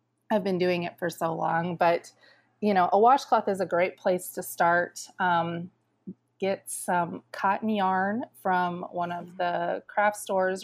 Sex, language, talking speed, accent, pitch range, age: female, English, 165 wpm, American, 180-205 Hz, 30-49